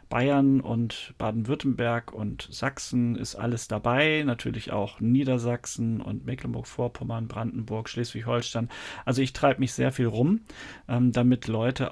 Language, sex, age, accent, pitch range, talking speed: German, male, 40-59, German, 115-150 Hz, 120 wpm